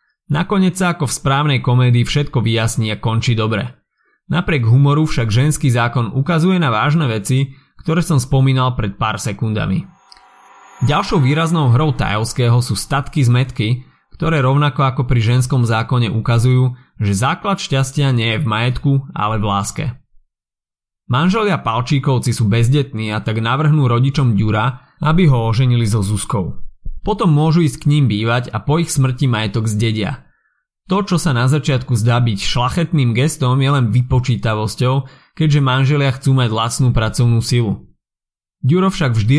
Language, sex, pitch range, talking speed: Slovak, male, 115-145 Hz, 150 wpm